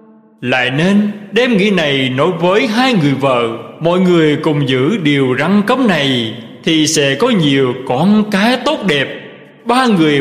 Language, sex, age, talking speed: Vietnamese, male, 20-39, 165 wpm